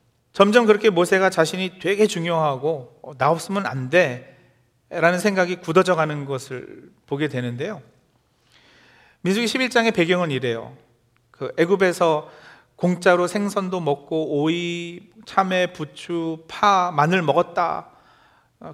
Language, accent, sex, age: Korean, native, male, 40-59